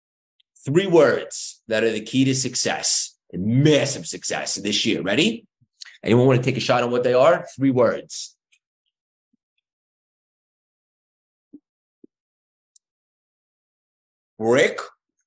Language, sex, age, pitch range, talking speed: English, male, 30-49, 120-160 Hz, 105 wpm